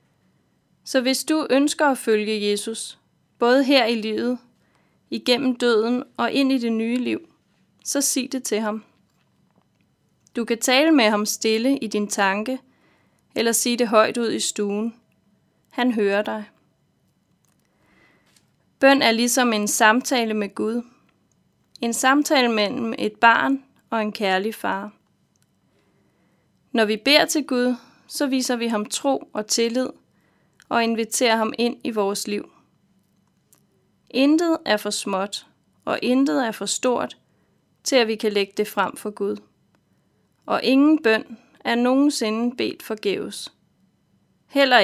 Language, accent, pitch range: Danish, native, 215-265 Hz